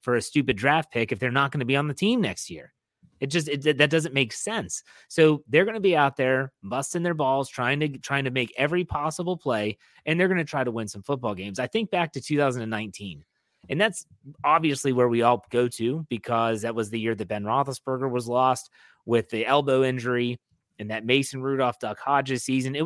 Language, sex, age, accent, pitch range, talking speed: English, male, 30-49, American, 120-155 Hz, 225 wpm